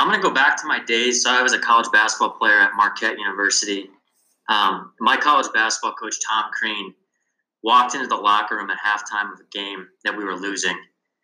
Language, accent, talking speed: English, American, 205 wpm